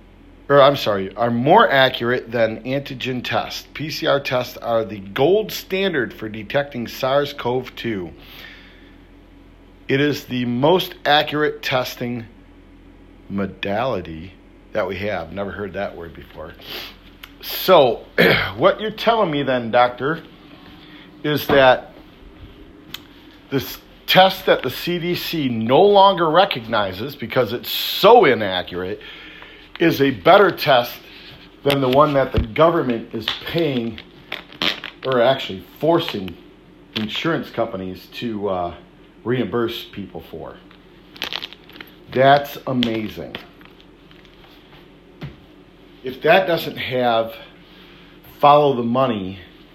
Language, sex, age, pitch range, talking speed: English, male, 50-69, 100-145 Hz, 105 wpm